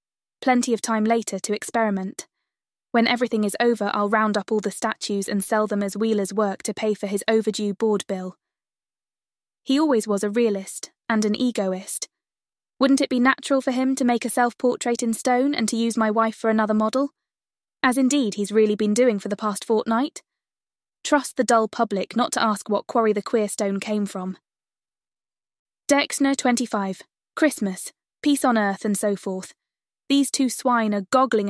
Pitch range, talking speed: 205-245 Hz, 180 wpm